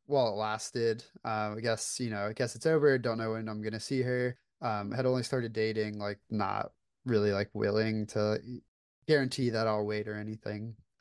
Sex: male